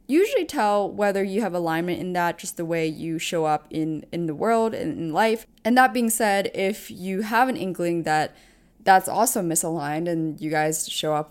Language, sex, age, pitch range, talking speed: English, female, 20-39, 165-220 Hz, 205 wpm